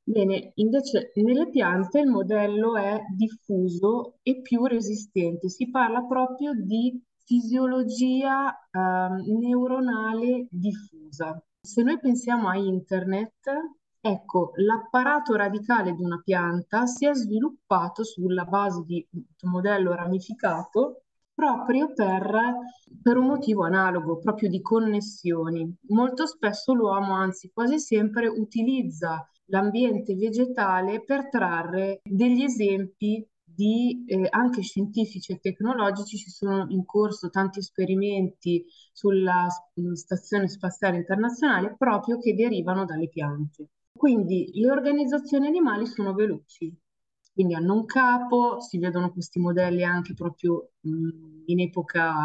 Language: Italian